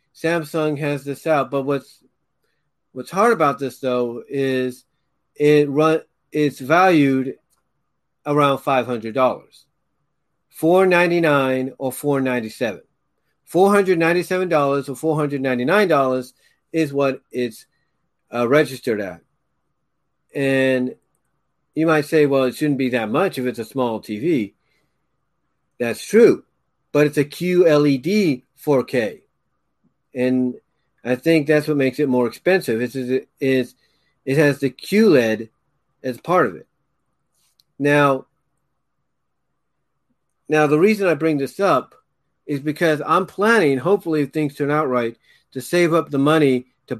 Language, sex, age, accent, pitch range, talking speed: English, male, 40-59, American, 130-160 Hz, 120 wpm